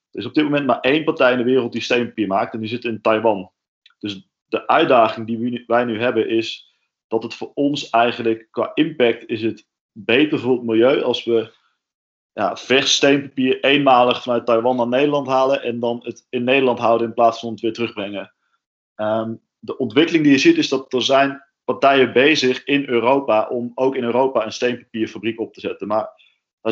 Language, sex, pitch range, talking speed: Dutch, male, 115-135 Hz, 200 wpm